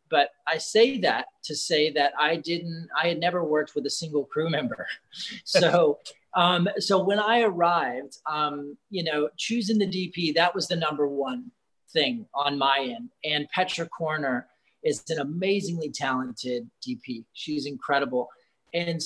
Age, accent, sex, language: 30-49, American, male, English